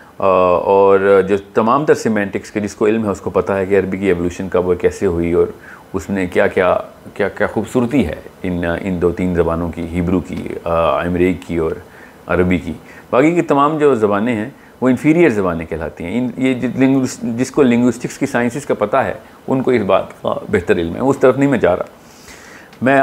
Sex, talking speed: male, 200 wpm